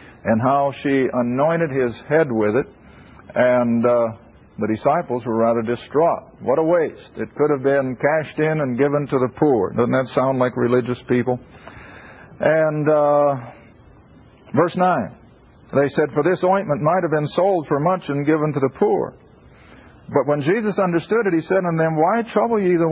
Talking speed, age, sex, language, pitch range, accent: 180 wpm, 50-69, male, English, 120-160 Hz, American